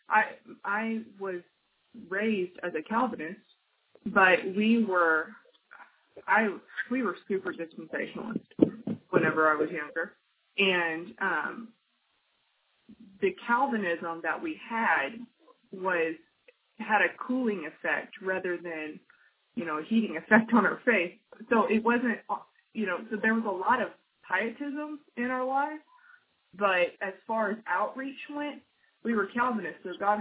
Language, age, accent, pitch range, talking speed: English, 20-39, American, 180-230 Hz, 130 wpm